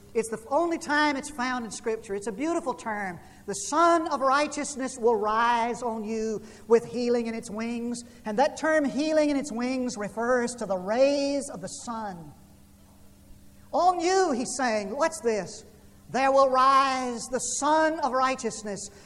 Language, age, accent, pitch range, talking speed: English, 50-69, American, 170-250 Hz, 165 wpm